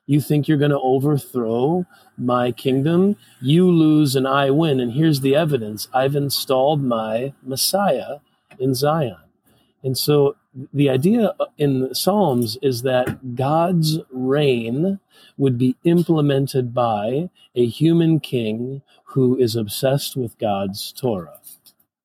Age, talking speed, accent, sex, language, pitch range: 40-59, 125 wpm, American, male, English, 115-150 Hz